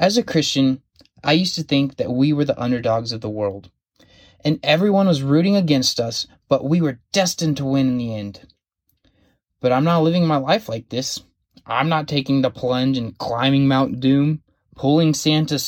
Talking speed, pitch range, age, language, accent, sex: 190 wpm, 130-180 Hz, 20-39, English, American, male